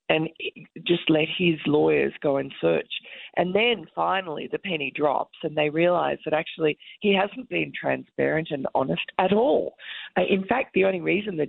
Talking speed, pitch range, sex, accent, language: 180 wpm, 150-205 Hz, female, Australian, English